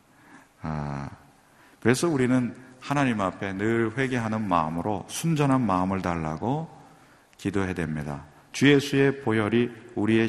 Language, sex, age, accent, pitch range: Korean, male, 40-59, native, 95-130 Hz